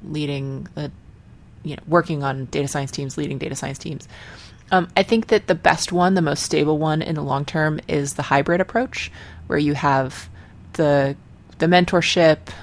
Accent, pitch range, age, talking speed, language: American, 135-165 Hz, 20-39, 180 wpm, English